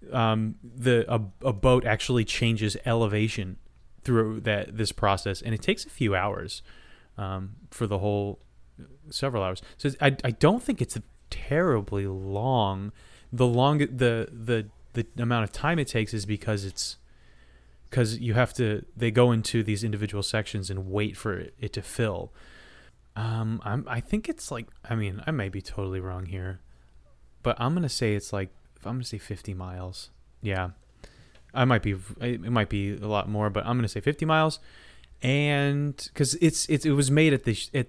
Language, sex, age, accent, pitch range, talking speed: English, male, 20-39, American, 100-125 Hz, 185 wpm